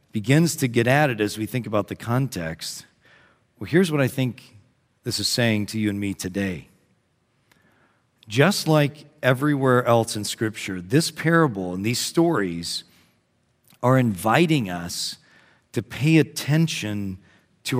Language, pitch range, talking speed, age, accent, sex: English, 105-145 Hz, 140 wpm, 40-59, American, male